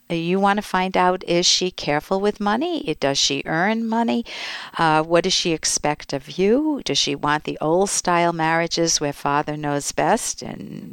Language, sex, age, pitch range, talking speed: English, female, 60-79, 150-195 Hz, 175 wpm